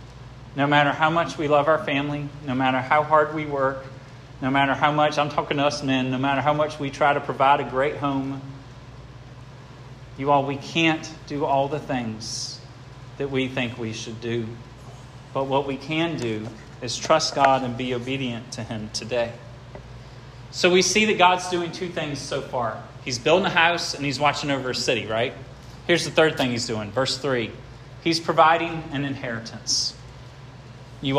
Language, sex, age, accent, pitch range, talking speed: English, male, 40-59, American, 125-150 Hz, 185 wpm